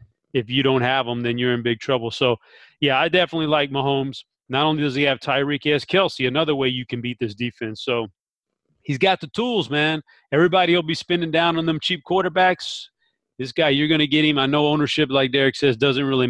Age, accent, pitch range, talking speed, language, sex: 30-49, American, 125-155 Hz, 230 wpm, English, male